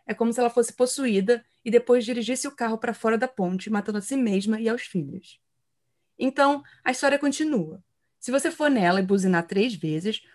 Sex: female